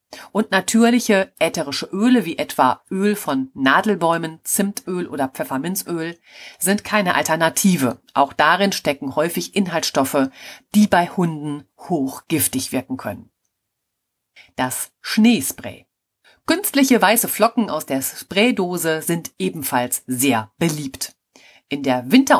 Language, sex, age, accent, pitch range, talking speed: German, female, 40-59, German, 140-205 Hz, 110 wpm